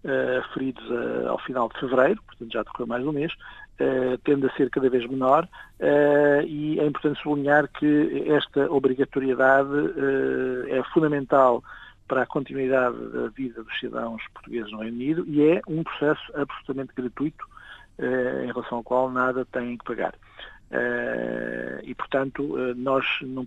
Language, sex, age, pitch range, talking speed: Portuguese, male, 50-69, 120-145 Hz, 160 wpm